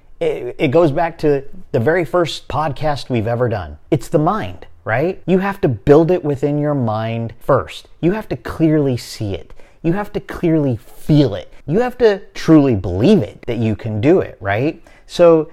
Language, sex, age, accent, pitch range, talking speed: English, male, 40-59, American, 105-150 Hz, 190 wpm